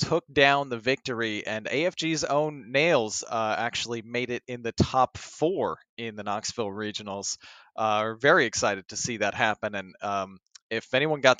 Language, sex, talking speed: English, male, 175 wpm